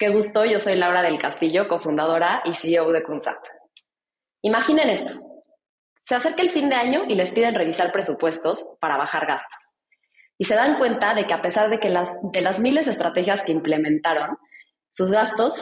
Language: Spanish